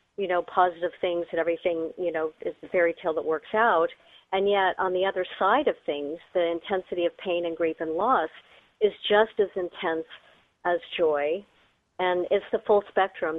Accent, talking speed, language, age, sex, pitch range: American, 190 wpm, English, 50-69, female, 175-210 Hz